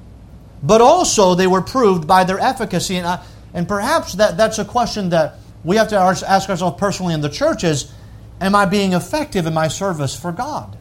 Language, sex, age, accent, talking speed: English, male, 50-69, American, 200 wpm